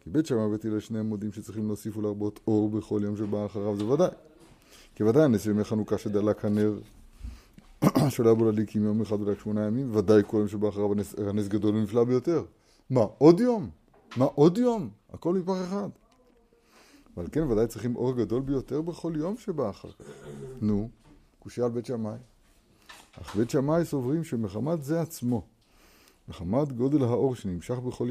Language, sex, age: Hebrew, male, 30-49